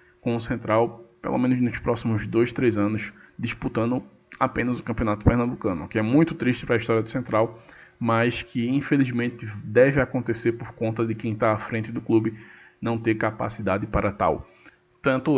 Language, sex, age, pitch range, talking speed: Portuguese, male, 20-39, 115-135 Hz, 175 wpm